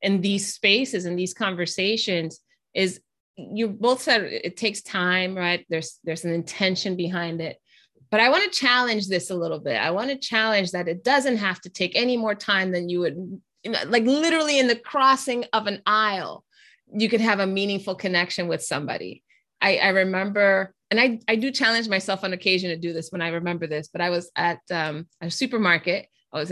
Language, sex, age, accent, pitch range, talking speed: English, female, 20-39, American, 180-235 Hz, 195 wpm